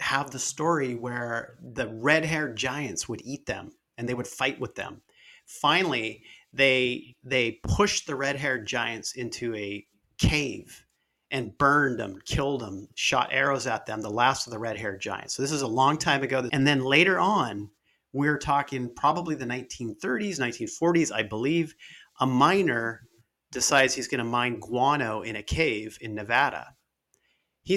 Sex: male